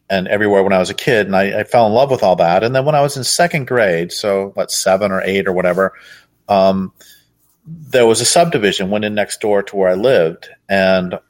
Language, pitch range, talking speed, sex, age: English, 95-135 Hz, 240 wpm, male, 40-59